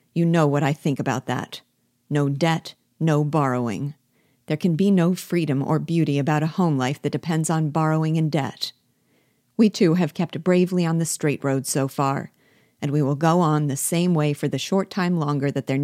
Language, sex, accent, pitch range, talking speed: English, female, American, 140-175 Hz, 205 wpm